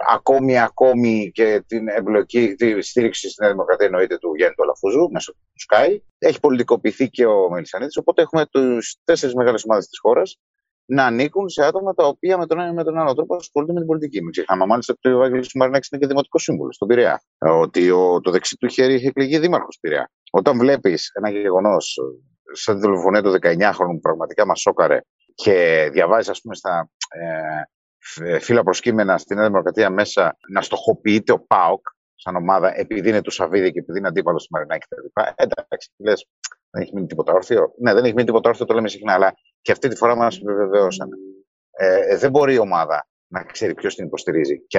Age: 30-49